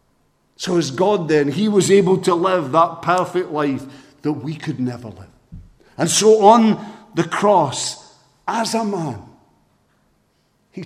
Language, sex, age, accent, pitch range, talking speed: English, male, 50-69, British, 115-170 Hz, 145 wpm